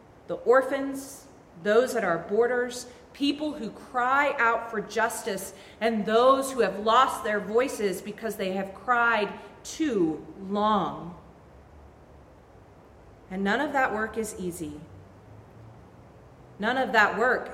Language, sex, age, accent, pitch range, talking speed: English, female, 40-59, American, 195-260 Hz, 125 wpm